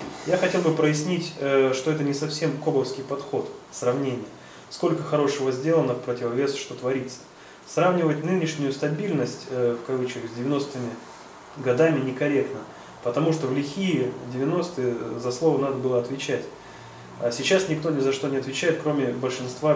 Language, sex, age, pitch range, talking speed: Russian, male, 20-39, 130-155 Hz, 145 wpm